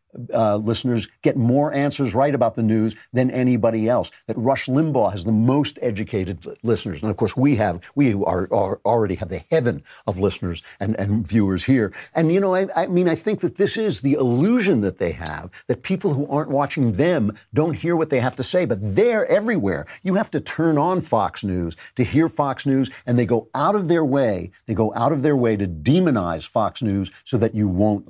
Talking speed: 215 wpm